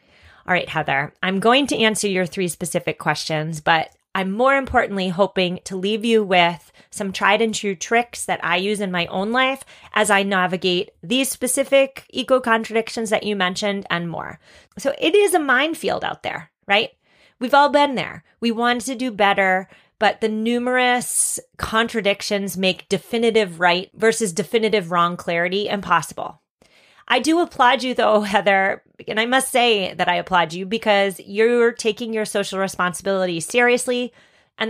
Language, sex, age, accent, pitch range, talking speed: English, female, 30-49, American, 180-240 Hz, 165 wpm